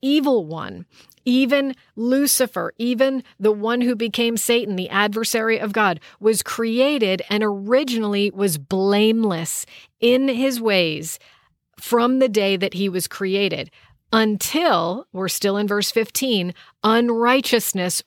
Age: 40-59